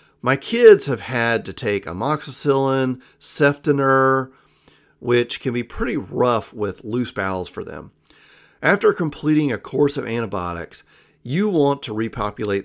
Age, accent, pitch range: 40-59, American, 100-135 Hz